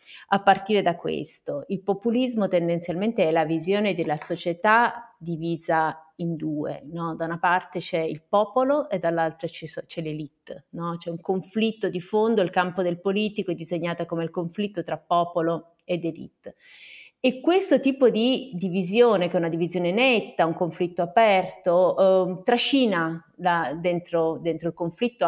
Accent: native